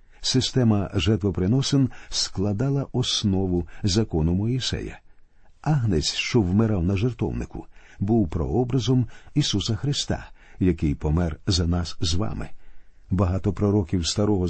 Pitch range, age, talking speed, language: 90-125 Hz, 50-69, 100 wpm, Ukrainian